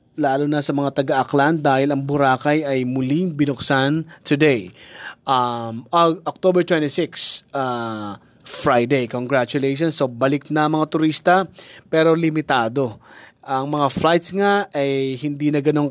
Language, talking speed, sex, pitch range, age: Filipino, 125 wpm, male, 130-165 Hz, 20-39